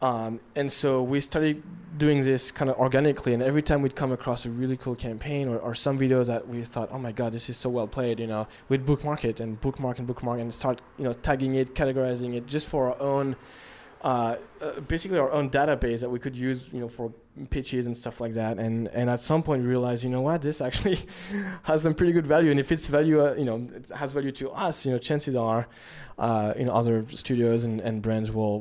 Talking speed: 240 wpm